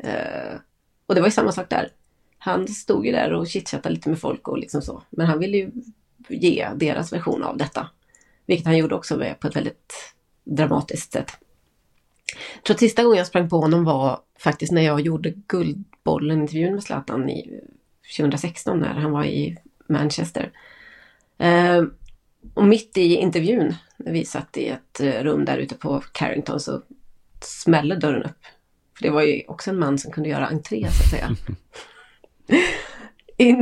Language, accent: Swedish, native